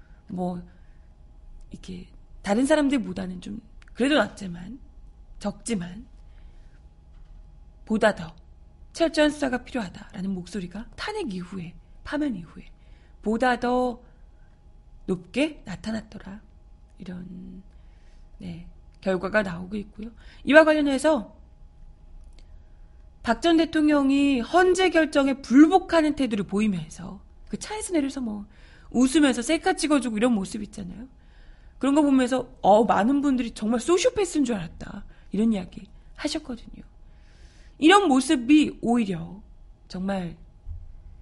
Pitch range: 185-275 Hz